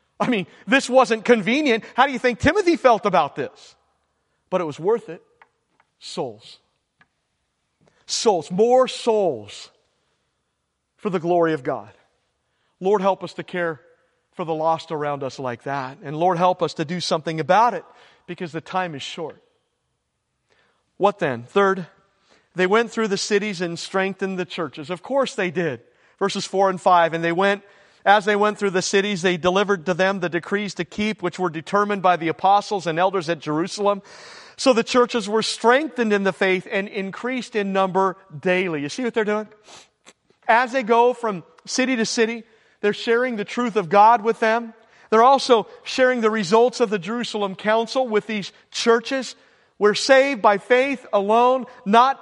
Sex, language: male, English